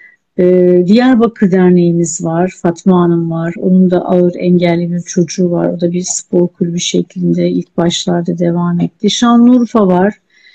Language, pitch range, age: Turkish, 175-205 Hz, 60-79